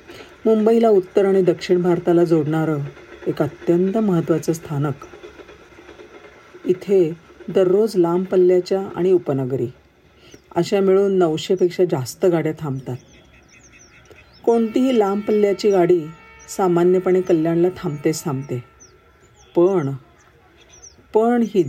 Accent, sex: native, female